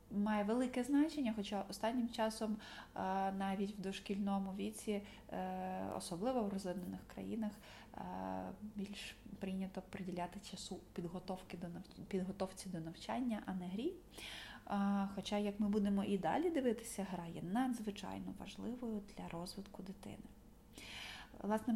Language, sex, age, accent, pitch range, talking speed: Ukrainian, female, 20-39, native, 185-220 Hz, 110 wpm